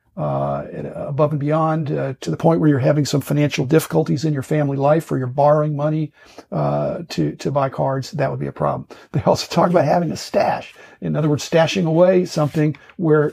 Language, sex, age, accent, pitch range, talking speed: English, male, 50-69, American, 140-160 Hz, 205 wpm